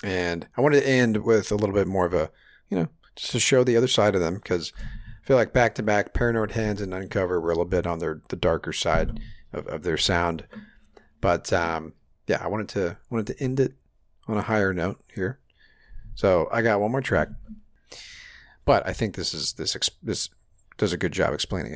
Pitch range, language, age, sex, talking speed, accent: 85-115 Hz, English, 40-59, male, 220 wpm, American